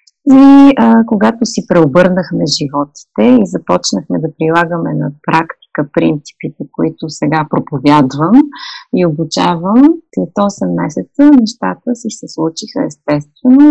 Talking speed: 115 wpm